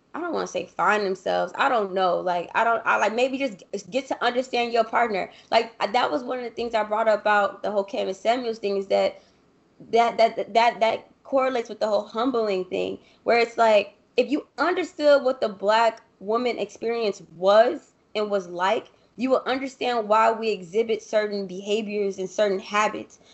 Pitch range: 205-245 Hz